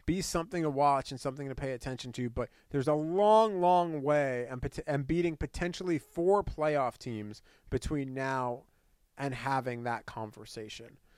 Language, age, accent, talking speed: English, 30-49, American, 155 wpm